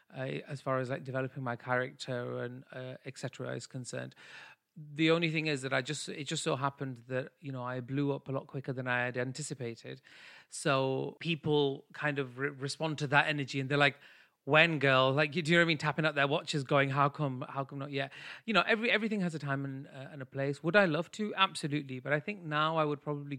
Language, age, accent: English, 30-49, British